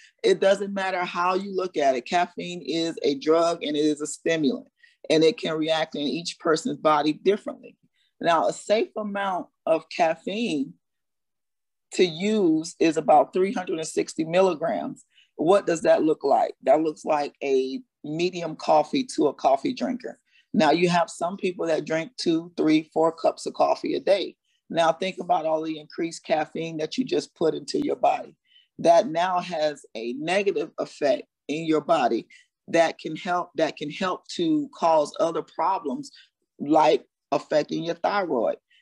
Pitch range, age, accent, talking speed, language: 155-210 Hz, 40-59, American, 160 wpm, English